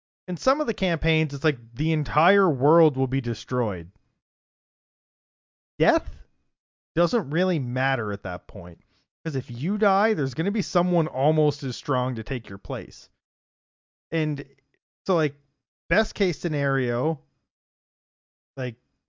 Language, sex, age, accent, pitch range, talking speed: English, male, 30-49, American, 120-160 Hz, 135 wpm